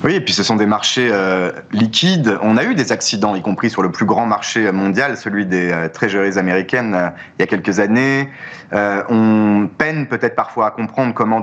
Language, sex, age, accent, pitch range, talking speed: French, male, 30-49, French, 105-120 Hz, 215 wpm